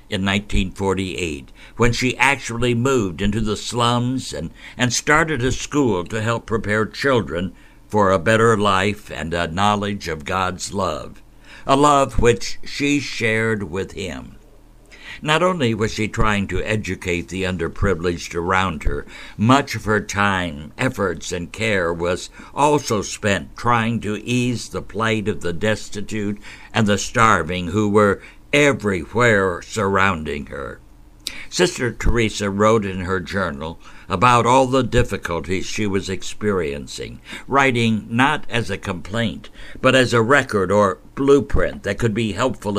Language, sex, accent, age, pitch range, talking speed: English, male, American, 60-79, 95-120 Hz, 140 wpm